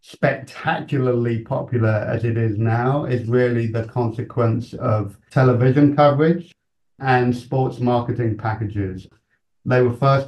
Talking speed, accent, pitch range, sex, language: 115 wpm, British, 115-135 Hz, male, English